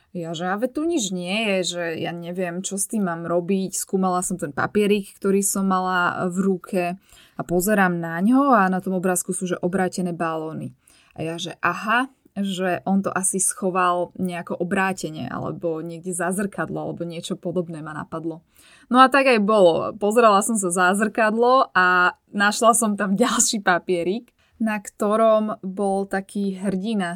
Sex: female